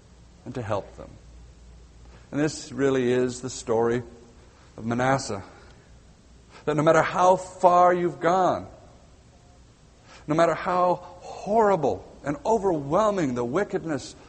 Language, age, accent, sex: English, 60-79, American, male